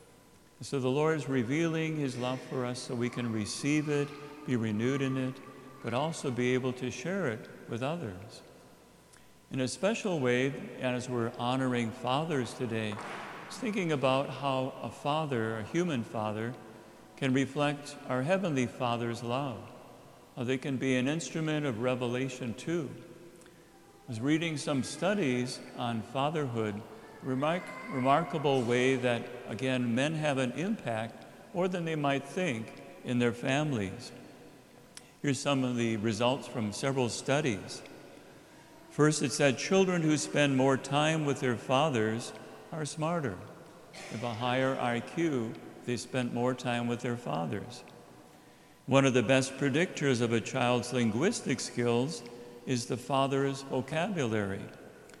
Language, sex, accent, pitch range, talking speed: English, male, American, 120-145 Hz, 140 wpm